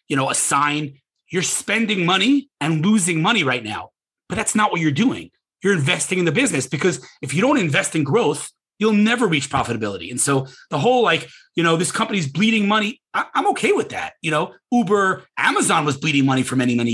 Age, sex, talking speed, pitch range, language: 30-49, male, 215 wpm, 130-190 Hz, English